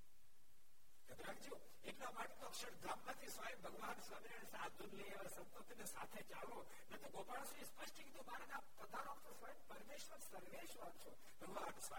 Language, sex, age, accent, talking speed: Gujarati, male, 60-79, native, 75 wpm